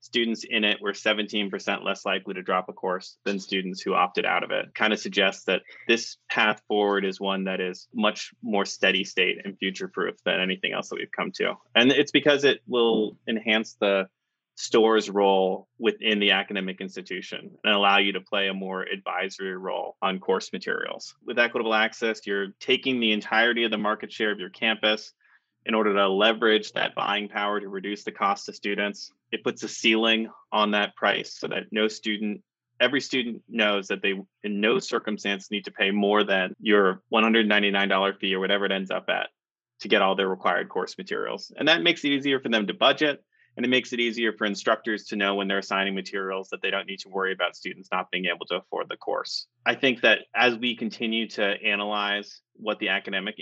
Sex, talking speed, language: male, 205 wpm, English